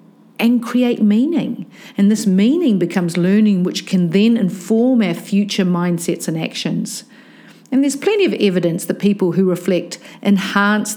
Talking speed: 150 wpm